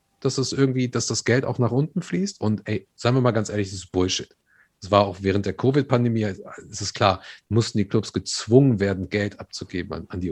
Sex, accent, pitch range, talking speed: male, German, 100-130 Hz, 225 wpm